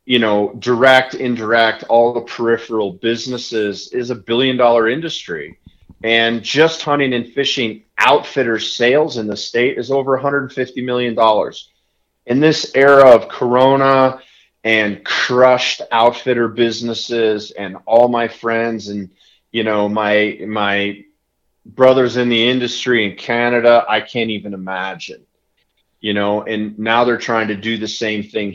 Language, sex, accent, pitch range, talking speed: English, male, American, 105-120 Hz, 135 wpm